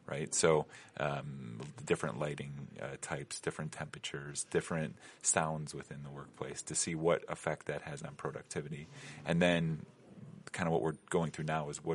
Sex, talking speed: male, 165 wpm